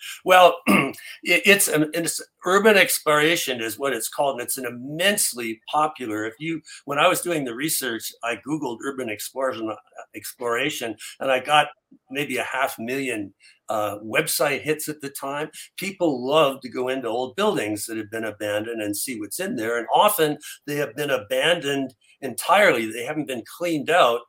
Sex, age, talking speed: male, 60-79, 170 wpm